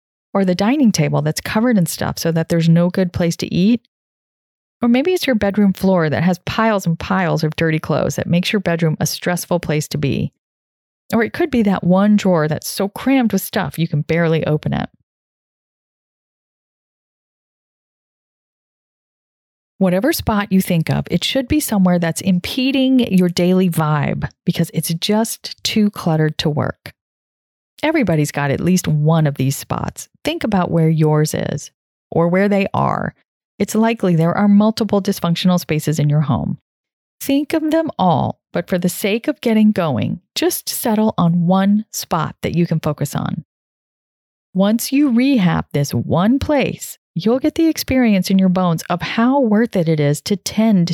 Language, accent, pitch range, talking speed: English, American, 165-220 Hz, 170 wpm